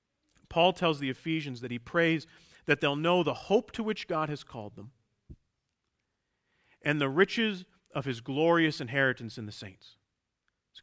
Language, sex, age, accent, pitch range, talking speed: English, male, 40-59, American, 115-170 Hz, 160 wpm